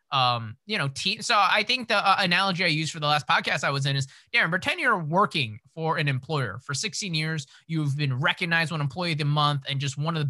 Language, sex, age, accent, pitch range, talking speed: English, male, 20-39, American, 145-195 Hz, 255 wpm